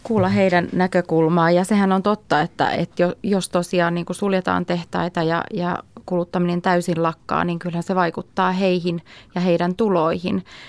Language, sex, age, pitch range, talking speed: Finnish, female, 30-49, 170-190 Hz, 155 wpm